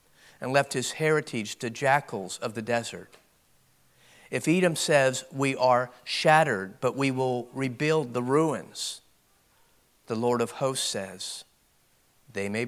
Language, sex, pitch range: English, male, 110-135 Hz